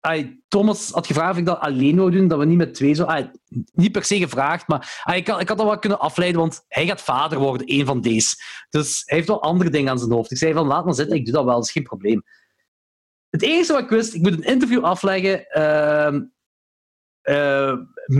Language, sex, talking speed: Dutch, male, 230 wpm